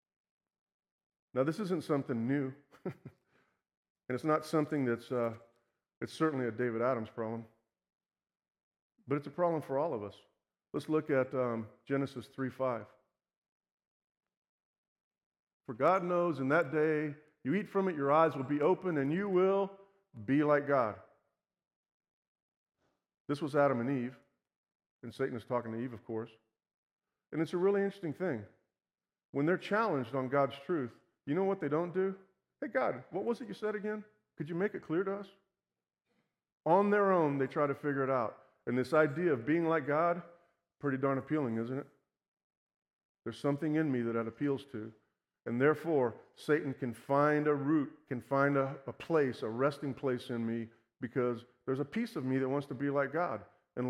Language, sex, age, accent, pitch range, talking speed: English, male, 40-59, American, 125-170 Hz, 175 wpm